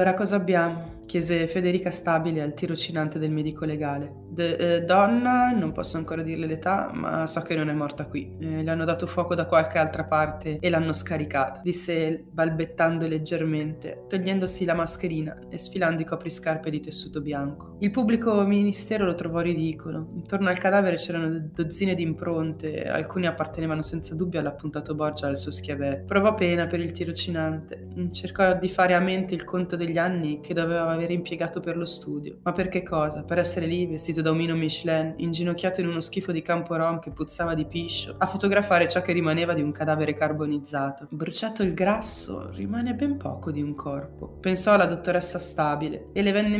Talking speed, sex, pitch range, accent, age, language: 185 wpm, female, 155-180 Hz, native, 20-39, Italian